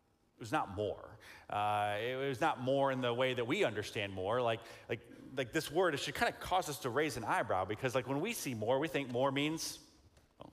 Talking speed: 240 wpm